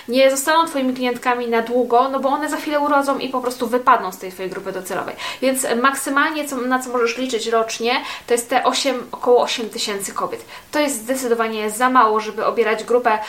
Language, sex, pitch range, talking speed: Polish, female, 220-270 Hz, 195 wpm